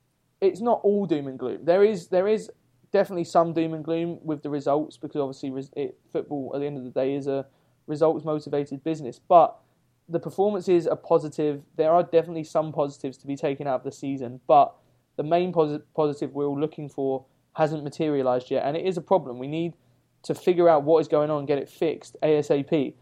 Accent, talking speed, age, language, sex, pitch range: British, 210 wpm, 20-39, English, male, 140-165 Hz